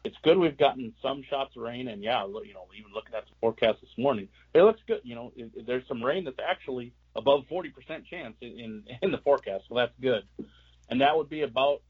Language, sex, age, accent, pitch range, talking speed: English, male, 40-59, American, 105-135 Hz, 220 wpm